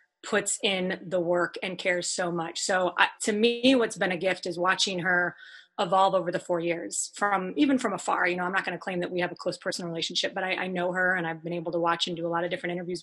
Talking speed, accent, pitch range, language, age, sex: 275 wpm, American, 180-210 Hz, English, 30-49, female